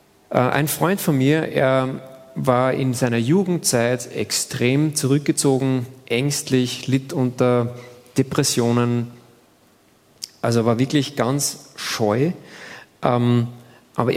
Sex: male